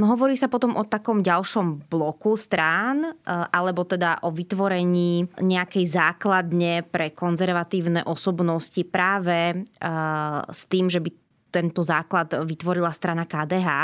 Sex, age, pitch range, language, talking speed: female, 20-39, 165-190 Hz, Slovak, 120 wpm